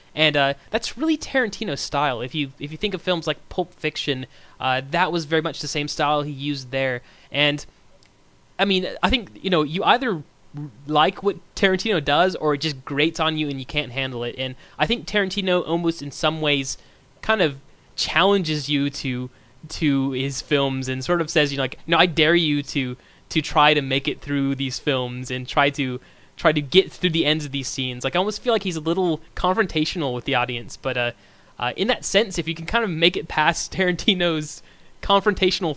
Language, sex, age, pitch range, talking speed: English, male, 20-39, 130-170 Hz, 215 wpm